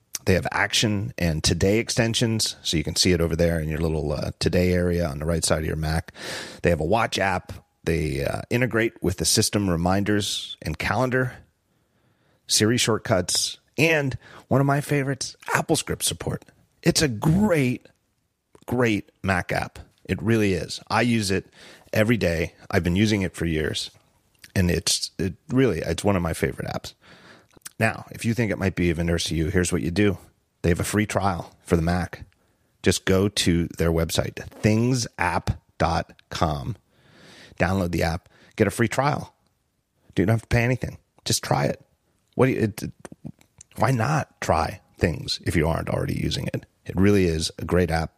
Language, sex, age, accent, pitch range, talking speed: English, male, 40-59, American, 85-115 Hz, 180 wpm